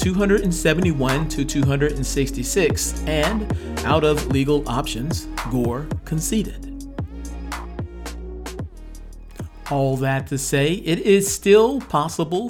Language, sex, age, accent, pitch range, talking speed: English, male, 50-69, American, 130-170 Hz, 85 wpm